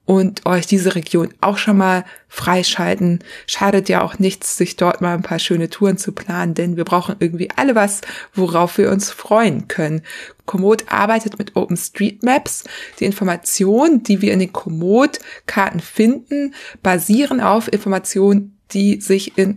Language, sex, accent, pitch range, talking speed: German, female, German, 190-225 Hz, 155 wpm